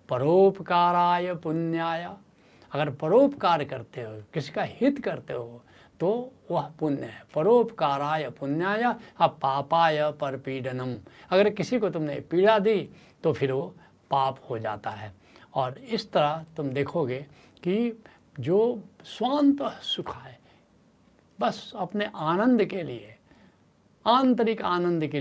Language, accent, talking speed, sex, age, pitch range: Hindi, native, 120 wpm, male, 70-89, 140-210 Hz